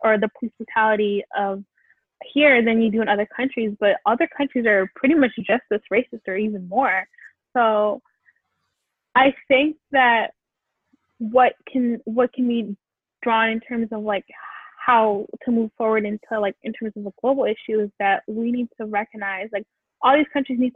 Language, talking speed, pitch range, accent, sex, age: English, 175 wpm, 210-245 Hz, American, female, 10-29